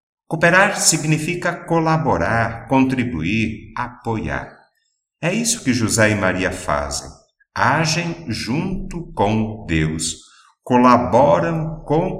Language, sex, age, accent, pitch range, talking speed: Portuguese, male, 50-69, Brazilian, 90-140 Hz, 90 wpm